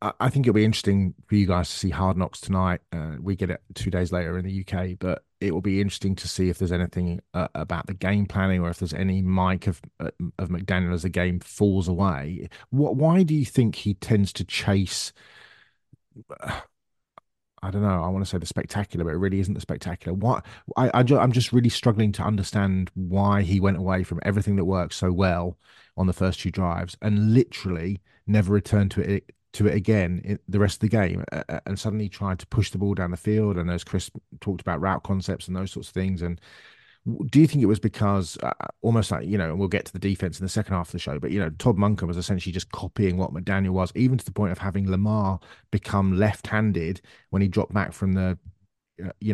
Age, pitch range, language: 30-49, 95-110 Hz, English